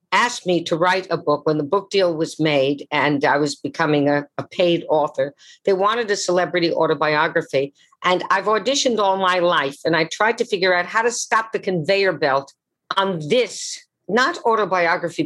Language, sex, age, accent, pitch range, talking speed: English, female, 50-69, American, 150-195 Hz, 185 wpm